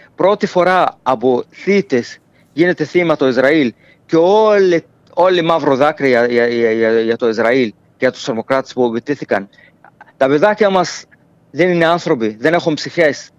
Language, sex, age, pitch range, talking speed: Greek, male, 40-59, 135-185 Hz, 140 wpm